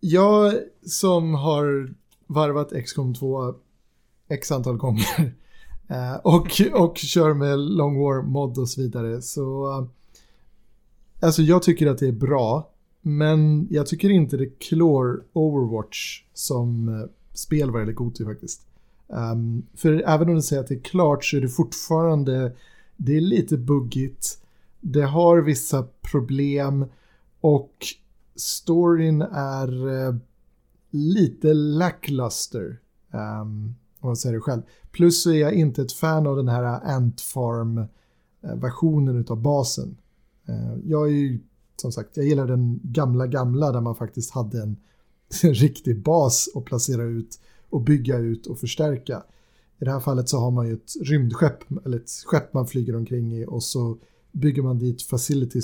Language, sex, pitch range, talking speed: Swedish, male, 120-155 Hz, 145 wpm